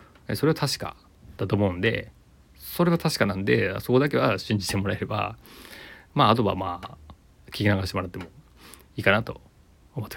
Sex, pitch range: male, 95-120 Hz